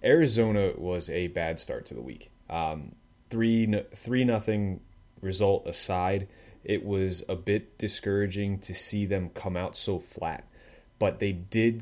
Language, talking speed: English, 145 wpm